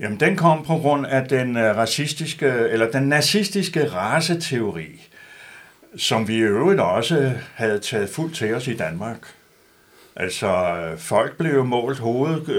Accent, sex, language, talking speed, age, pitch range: native, male, Danish, 140 wpm, 60-79, 115-160 Hz